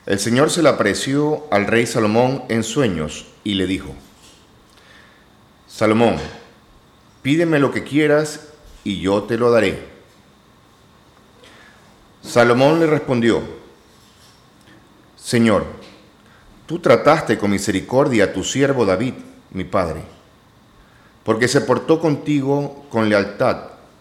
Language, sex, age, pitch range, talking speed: Spanish, male, 40-59, 100-150 Hz, 105 wpm